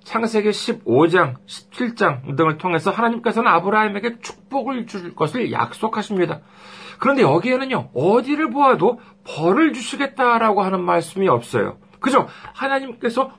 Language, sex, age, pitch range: Korean, male, 40-59, 150-220 Hz